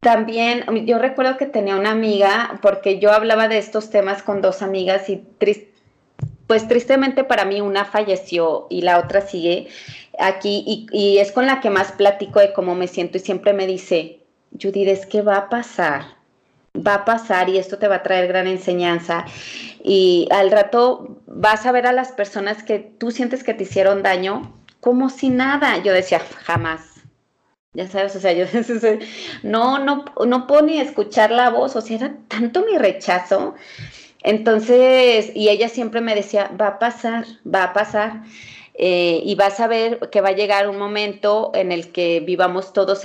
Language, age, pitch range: Spanish, 30-49, 190-230 Hz